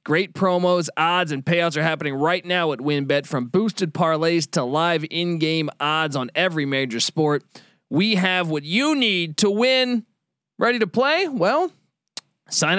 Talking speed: 165 wpm